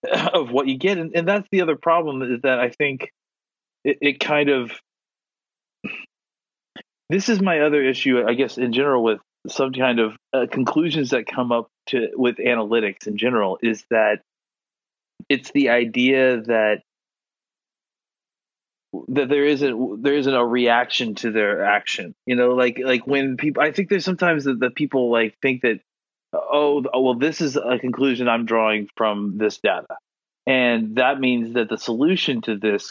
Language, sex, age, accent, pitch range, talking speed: English, male, 30-49, American, 120-145 Hz, 170 wpm